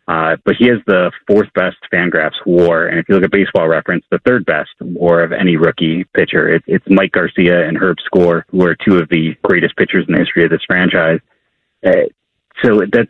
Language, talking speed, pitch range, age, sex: English, 205 wpm, 85-100 Hz, 30-49, male